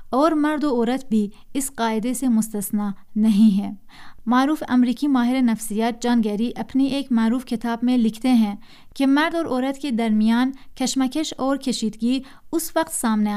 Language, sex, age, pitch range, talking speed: Urdu, female, 30-49, 220-270 Hz, 160 wpm